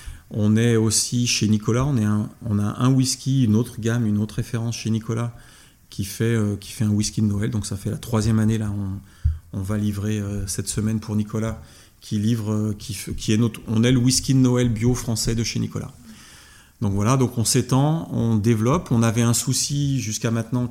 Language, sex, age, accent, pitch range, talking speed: French, male, 30-49, French, 105-120 Hz, 220 wpm